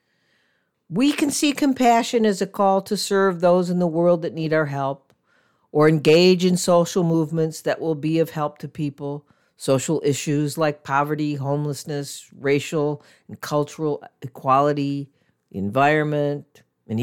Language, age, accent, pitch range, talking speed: English, 50-69, American, 140-185 Hz, 140 wpm